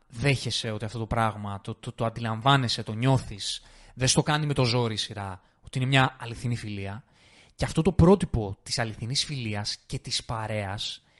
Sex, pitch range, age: male, 115-155 Hz, 20-39